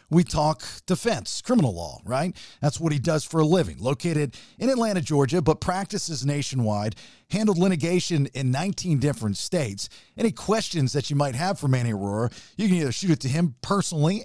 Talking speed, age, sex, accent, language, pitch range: 180 wpm, 50-69, male, American, English, 130-175 Hz